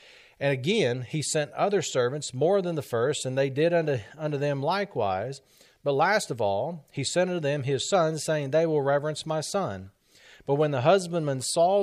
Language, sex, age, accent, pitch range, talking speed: English, male, 40-59, American, 130-160 Hz, 195 wpm